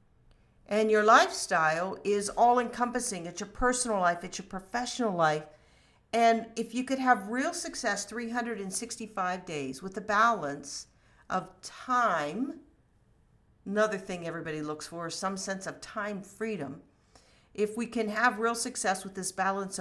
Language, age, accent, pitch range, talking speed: English, 50-69, American, 180-235 Hz, 140 wpm